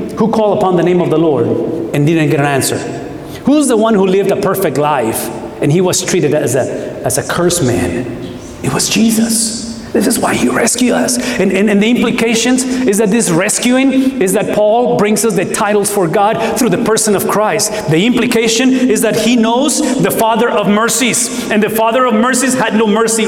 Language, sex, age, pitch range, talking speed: English, male, 40-59, 170-230 Hz, 210 wpm